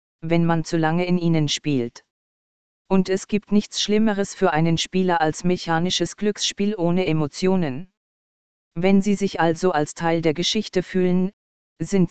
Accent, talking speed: German, 150 wpm